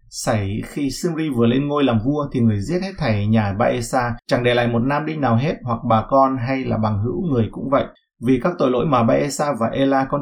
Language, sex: Vietnamese, male